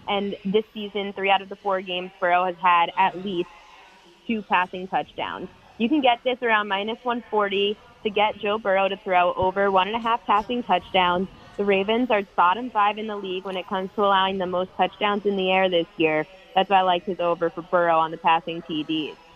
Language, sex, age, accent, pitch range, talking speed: English, female, 20-39, American, 190-230 Hz, 215 wpm